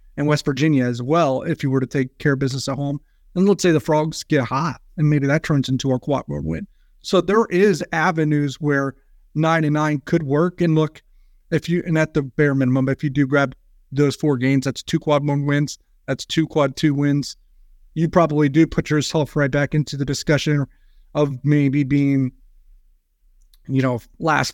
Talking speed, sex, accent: 200 wpm, male, American